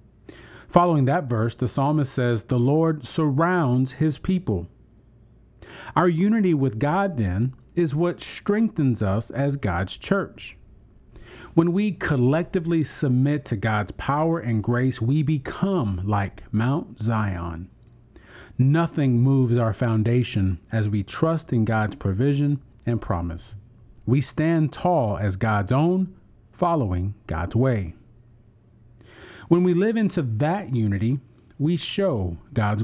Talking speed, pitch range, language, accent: 120 wpm, 110-155 Hz, English, American